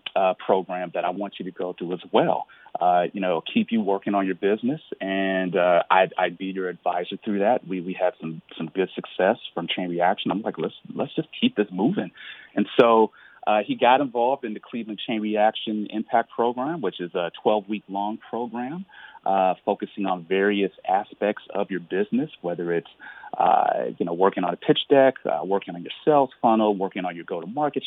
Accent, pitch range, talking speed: American, 95-110 Hz, 205 wpm